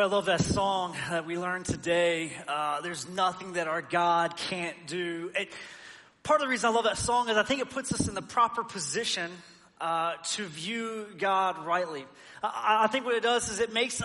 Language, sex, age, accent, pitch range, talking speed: English, male, 30-49, American, 180-230 Hz, 205 wpm